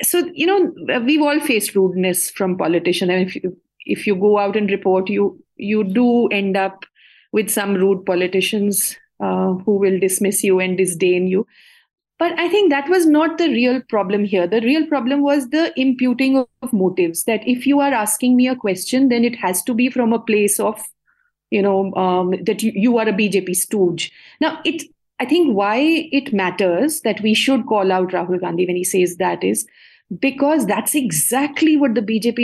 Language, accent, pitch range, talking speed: English, Indian, 195-280 Hz, 200 wpm